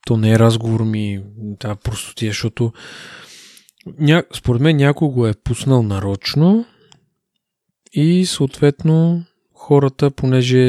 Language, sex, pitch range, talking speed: Bulgarian, male, 110-135 Hz, 105 wpm